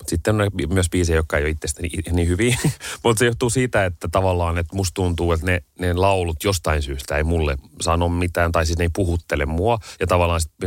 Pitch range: 75-85 Hz